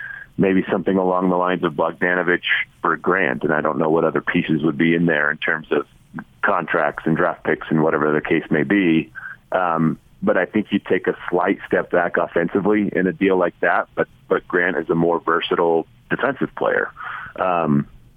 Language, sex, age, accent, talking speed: English, male, 40-59, American, 195 wpm